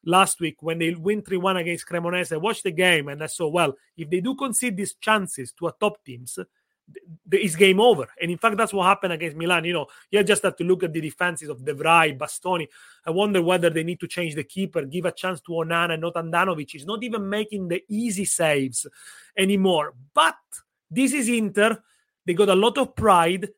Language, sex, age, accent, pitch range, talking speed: English, male, 30-49, Italian, 165-200 Hz, 220 wpm